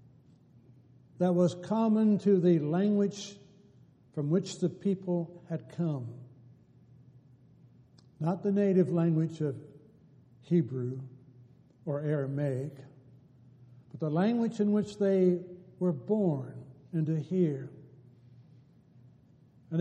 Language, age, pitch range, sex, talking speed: English, 60-79, 135-180 Hz, male, 95 wpm